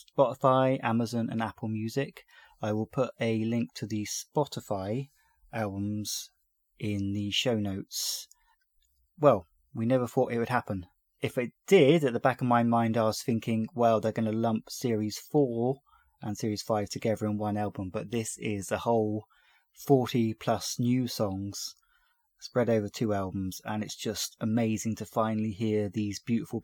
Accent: British